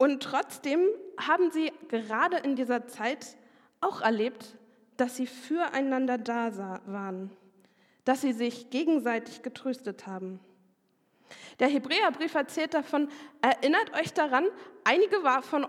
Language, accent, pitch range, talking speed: German, German, 230-285 Hz, 115 wpm